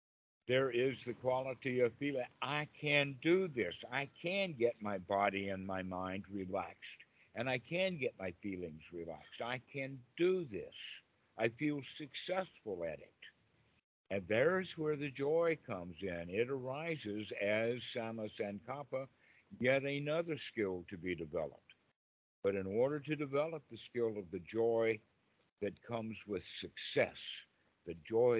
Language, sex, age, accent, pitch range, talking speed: English, male, 60-79, American, 105-140 Hz, 145 wpm